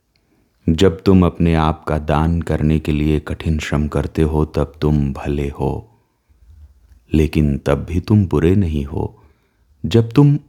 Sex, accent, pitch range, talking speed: male, native, 75-105 Hz, 150 wpm